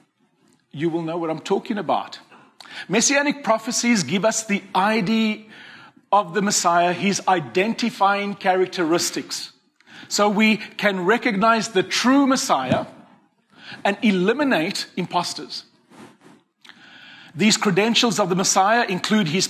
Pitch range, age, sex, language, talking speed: 190-240 Hz, 40-59, male, English, 110 wpm